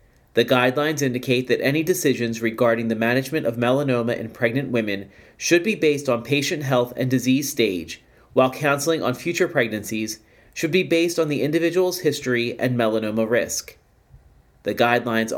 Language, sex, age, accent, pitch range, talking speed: English, male, 30-49, American, 120-150 Hz, 155 wpm